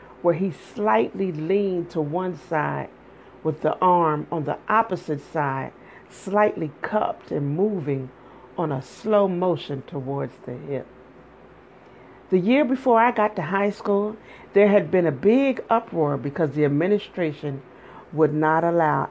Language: English